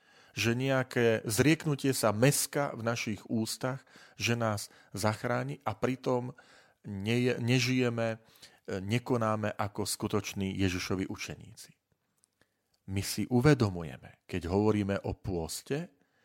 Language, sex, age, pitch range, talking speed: Slovak, male, 40-59, 100-135 Hz, 90 wpm